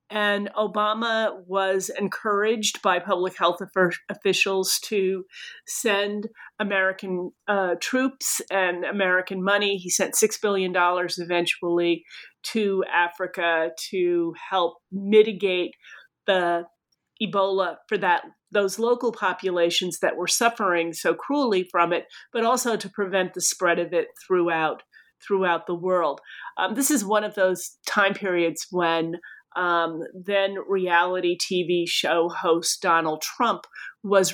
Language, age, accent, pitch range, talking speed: English, 40-59, American, 170-200 Hz, 120 wpm